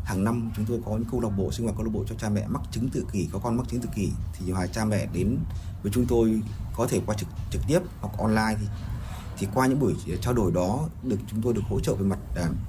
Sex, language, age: male, Vietnamese, 20-39